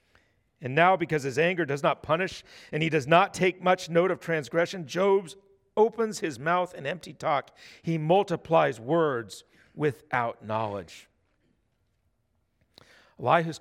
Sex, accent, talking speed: male, American, 130 wpm